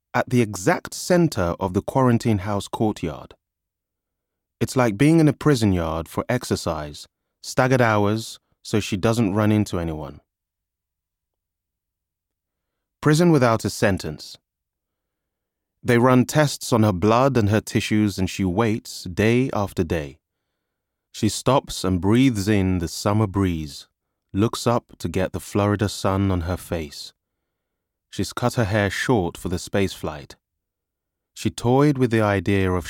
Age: 20-39